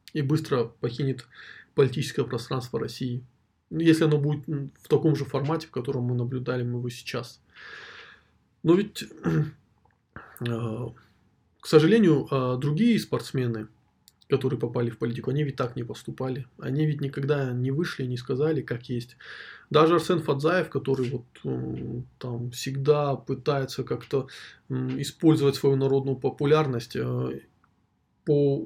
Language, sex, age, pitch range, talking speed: Russian, male, 20-39, 125-155 Hz, 120 wpm